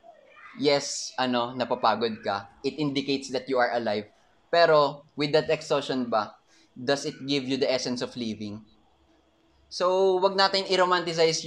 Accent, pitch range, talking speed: native, 125-155 Hz, 140 wpm